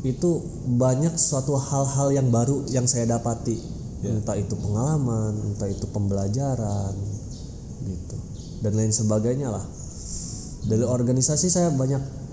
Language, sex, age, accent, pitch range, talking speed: Indonesian, male, 20-39, native, 105-135 Hz, 115 wpm